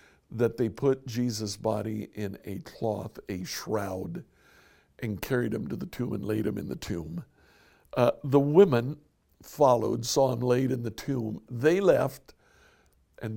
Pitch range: 90-130 Hz